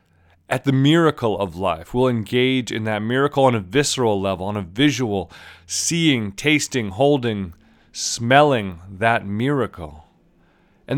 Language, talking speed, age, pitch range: English, 130 wpm, 40-59, 100-130 Hz